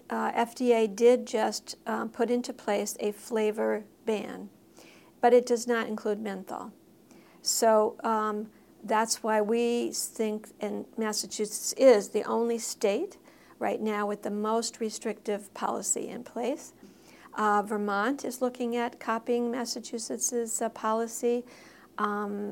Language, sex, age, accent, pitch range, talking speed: English, female, 50-69, American, 215-235 Hz, 130 wpm